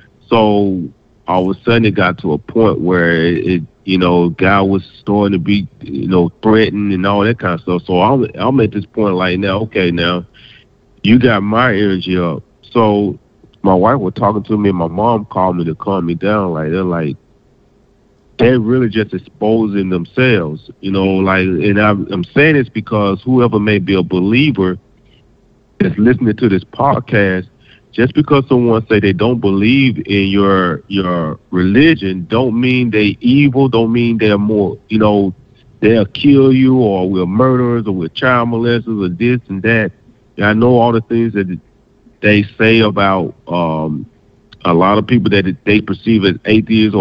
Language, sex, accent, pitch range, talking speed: English, male, American, 95-115 Hz, 175 wpm